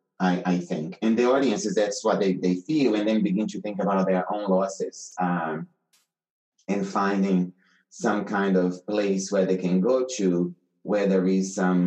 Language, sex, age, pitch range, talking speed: English, male, 30-49, 90-110 Hz, 180 wpm